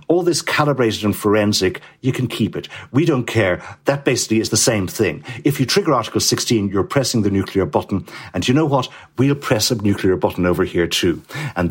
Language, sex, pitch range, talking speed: English, male, 100-135 Hz, 210 wpm